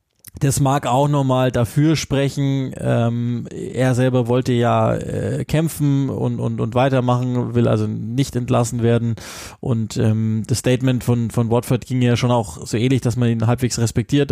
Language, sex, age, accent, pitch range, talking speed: German, male, 20-39, German, 115-135 Hz, 170 wpm